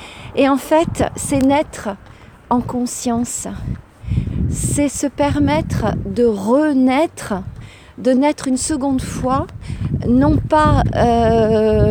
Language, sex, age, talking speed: French, female, 40-59, 100 wpm